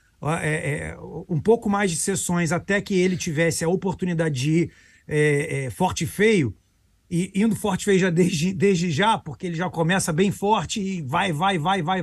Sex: male